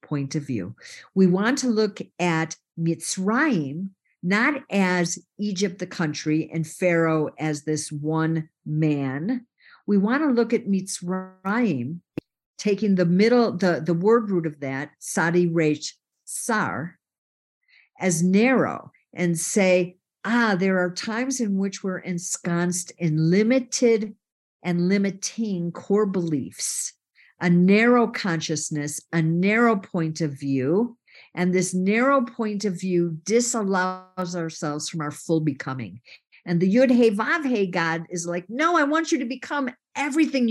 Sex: female